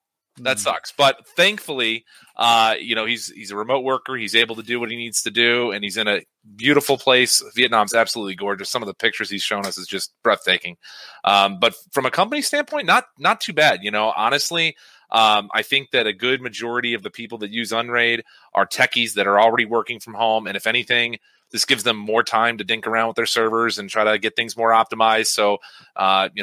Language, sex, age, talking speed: English, male, 30-49, 225 wpm